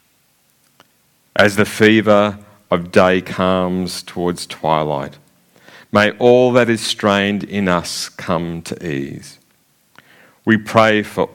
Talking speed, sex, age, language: 110 wpm, male, 50-69, English